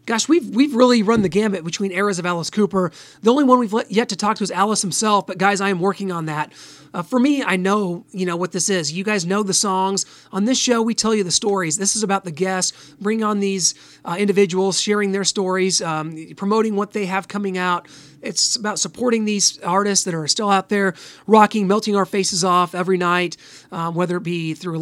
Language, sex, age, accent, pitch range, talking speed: English, male, 30-49, American, 180-220 Hz, 230 wpm